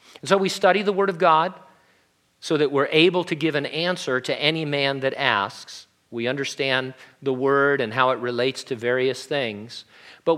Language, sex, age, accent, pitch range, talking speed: English, male, 50-69, American, 115-150 Hz, 190 wpm